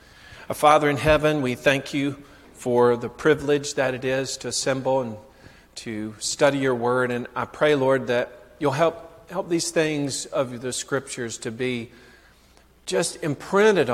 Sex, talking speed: male, 160 wpm